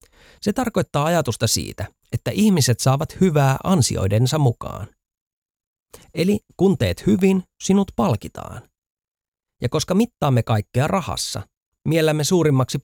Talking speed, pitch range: 105 wpm, 110-180 Hz